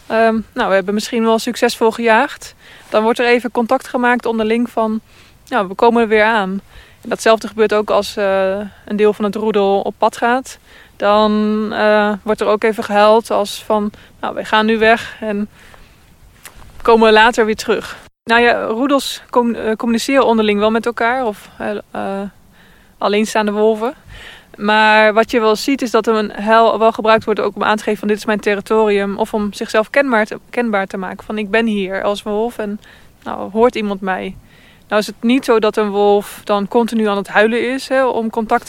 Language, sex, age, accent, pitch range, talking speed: Dutch, female, 20-39, Dutch, 210-230 Hz, 195 wpm